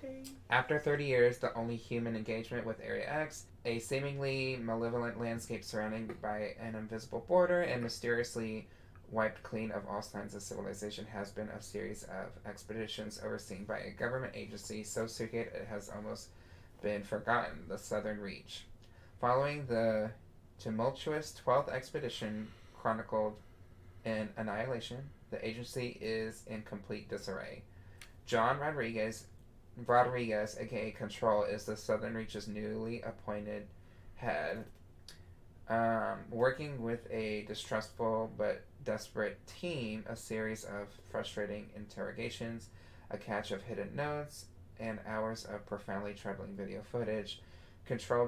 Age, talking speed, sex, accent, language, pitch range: 20-39, 125 wpm, male, American, English, 100-115 Hz